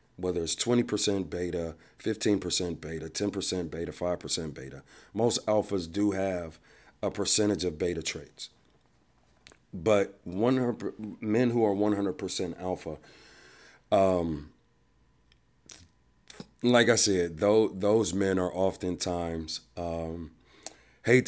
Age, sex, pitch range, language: 40-59, male, 85-100 Hz, English